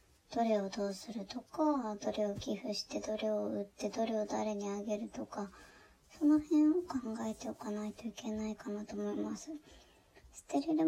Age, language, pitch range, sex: 20-39, Japanese, 210-285 Hz, male